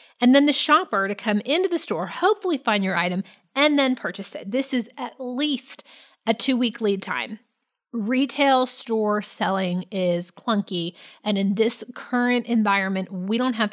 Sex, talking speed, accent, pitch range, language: female, 165 wpm, American, 195-255 Hz, English